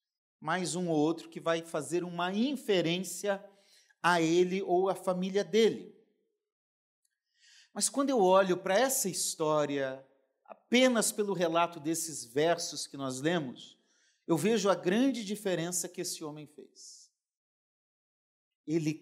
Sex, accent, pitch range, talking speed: male, Brazilian, 145-200 Hz, 125 wpm